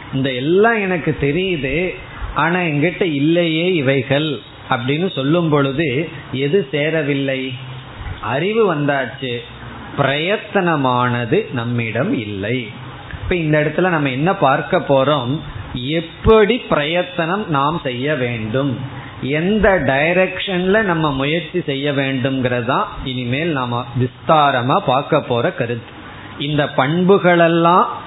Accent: native